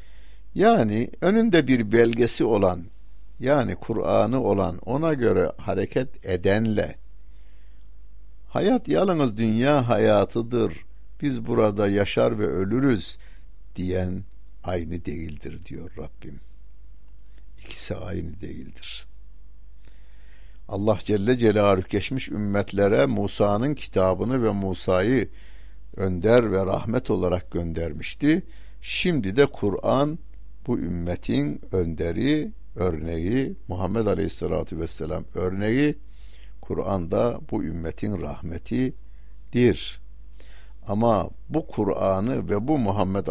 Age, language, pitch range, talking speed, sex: 60-79, Turkish, 90-125 Hz, 90 wpm, male